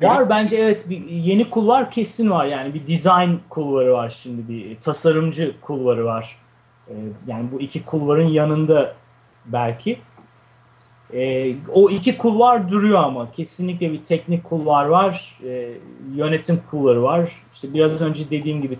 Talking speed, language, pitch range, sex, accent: 130 wpm, Turkish, 135-170 Hz, male, native